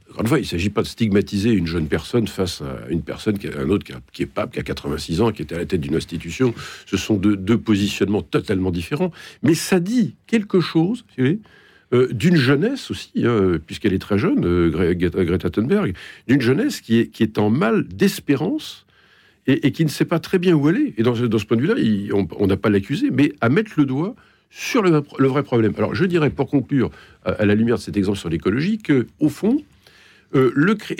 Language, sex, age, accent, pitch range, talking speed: French, male, 50-69, French, 100-160 Hz, 230 wpm